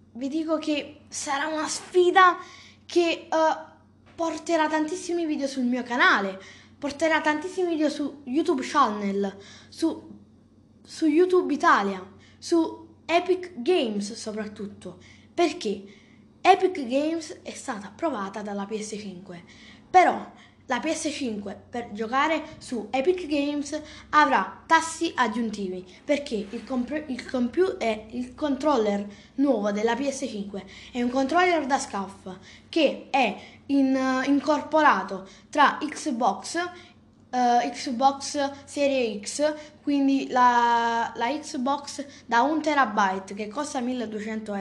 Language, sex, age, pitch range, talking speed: Italian, female, 20-39, 225-320 Hz, 110 wpm